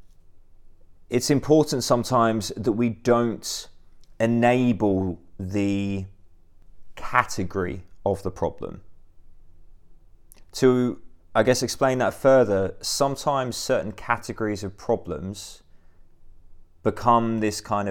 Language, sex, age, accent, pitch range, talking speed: English, male, 20-39, British, 90-110 Hz, 85 wpm